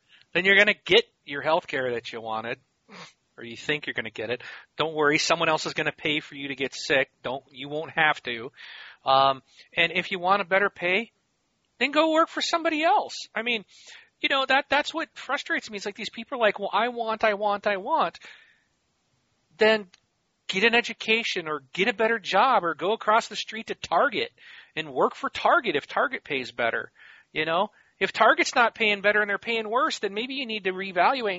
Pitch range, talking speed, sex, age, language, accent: 160-225 Hz, 220 wpm, male, 40-59, English, American